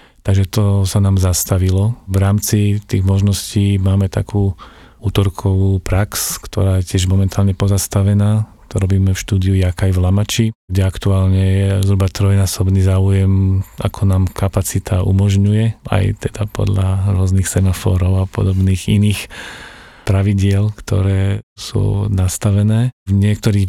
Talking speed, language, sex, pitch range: 125 wpm, Slovak, male, 95-105 Hz